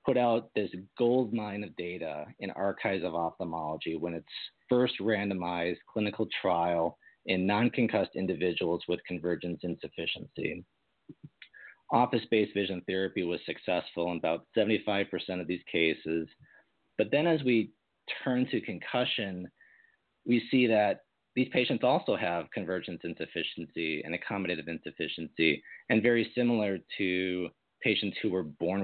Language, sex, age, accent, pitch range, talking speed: English, male, 40-59, American, 90-115 Hz, 125 wpm